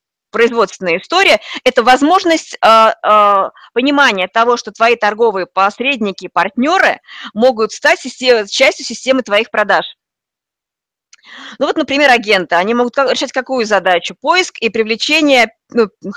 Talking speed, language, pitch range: 115 wpm, Russian, 210-275 Hz